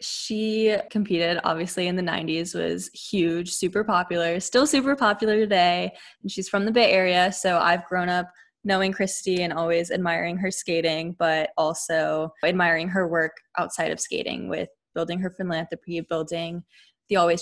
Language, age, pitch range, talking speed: English, 10-29, 170-200 Hz, 160 wpm